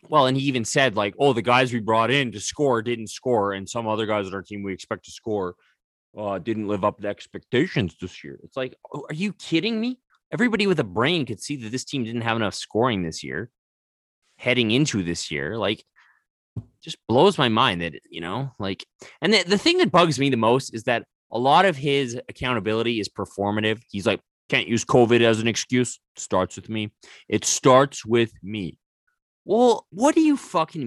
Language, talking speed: English, 210 wpm